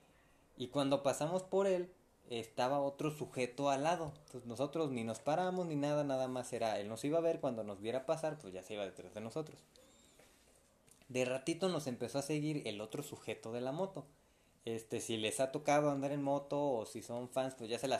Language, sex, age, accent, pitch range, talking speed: Spanish, male, 20-39, Mexican, 120-160 Hz, 215 wpm